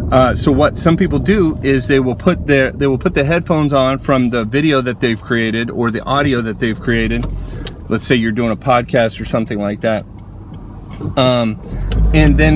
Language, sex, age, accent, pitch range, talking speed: English, male, 30-49, American, 115-140 Hz, 200 wpm